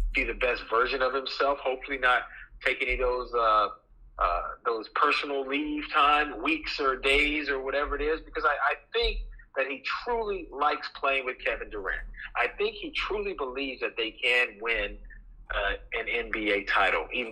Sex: male